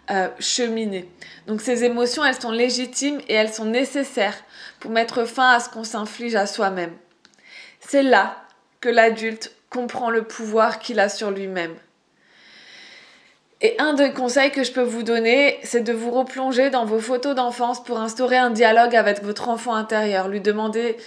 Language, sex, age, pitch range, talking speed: French, female, 20-39, 220-250 Hz, 165 wpm